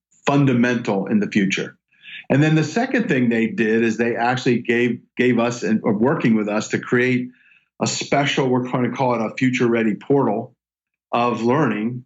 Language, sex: English, male